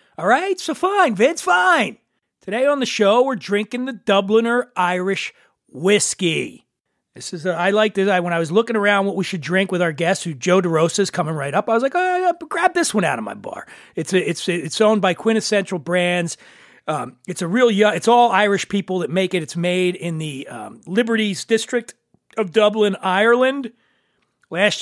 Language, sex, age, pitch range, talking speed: English, male, 40-59, 180-230 Hz, 210 wpm